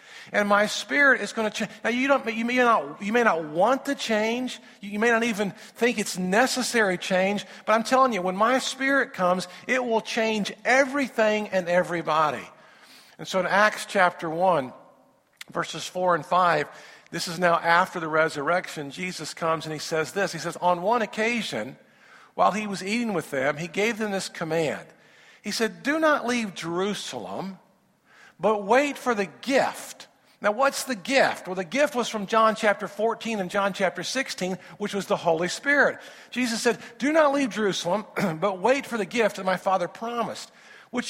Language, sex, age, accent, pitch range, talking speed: English, male, 50-69, American, 180-235 Hz, 185 wpm